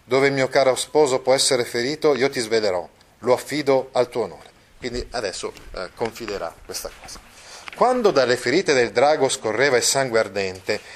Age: 40-59